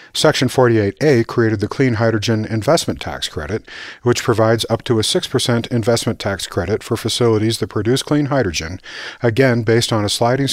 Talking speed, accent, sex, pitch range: 165 wpm, American, male, 100-125 Hz